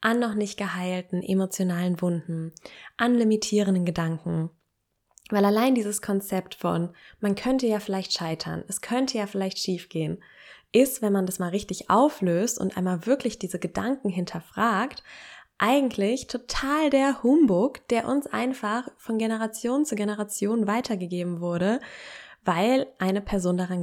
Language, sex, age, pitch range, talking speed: German, female, 20-39, 185-235 Hz, 140 wpm